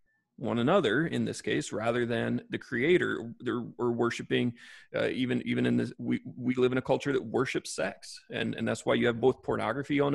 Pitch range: 115-145 Hz